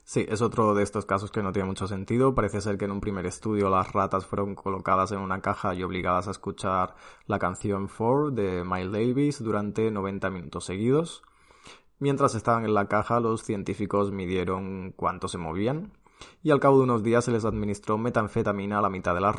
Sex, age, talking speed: male, 20-39, 200 wpm